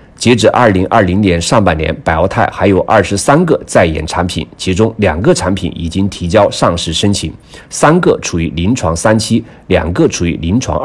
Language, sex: Chinese, male